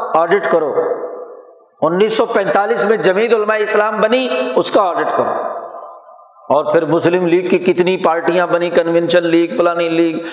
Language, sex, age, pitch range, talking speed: Urdu, male, 60-79, 170-230 Hz, 140 wpm